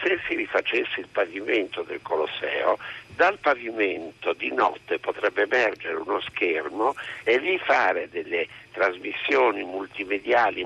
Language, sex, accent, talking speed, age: Italian, male, native, 120 wpm, 60-79